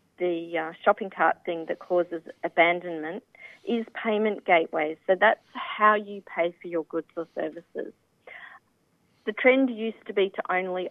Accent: Australian